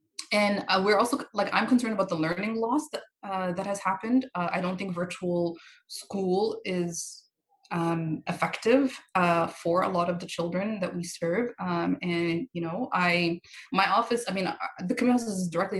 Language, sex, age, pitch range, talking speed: English, female, 20-39, 165-190 Hz, 180 wpm